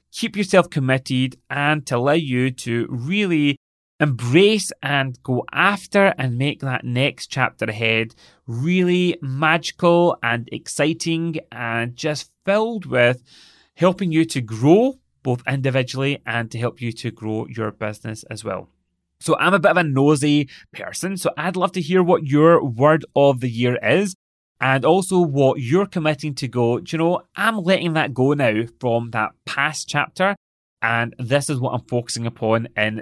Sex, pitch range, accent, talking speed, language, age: male, 120-165 Hz, British, 160 wpm, English, 30-49